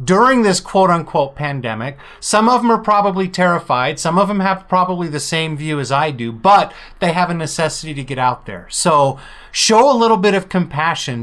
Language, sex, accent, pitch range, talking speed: English, male, American, 145-195 Hz, 200 wpm